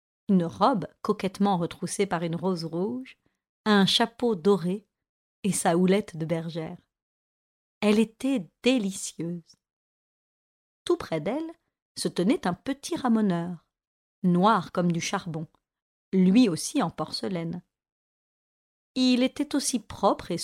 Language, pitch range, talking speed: French, 175-225 Hz, 115 wpm